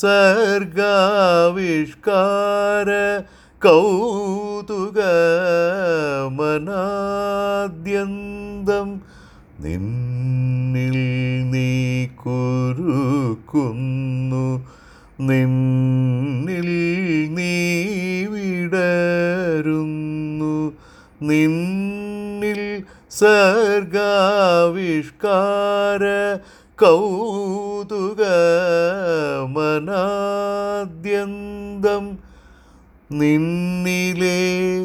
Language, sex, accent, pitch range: Malayalam, male, native, 130-195 Hz